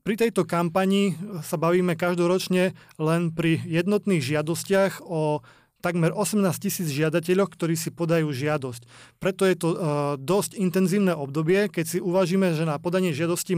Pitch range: 160-190 Hz